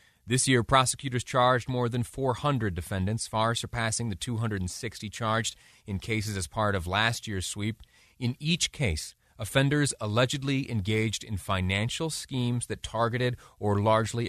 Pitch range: 100-125 Hz